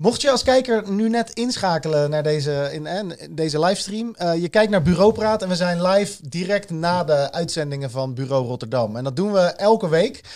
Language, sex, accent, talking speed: Dutch, male, Dutch, 210 wpm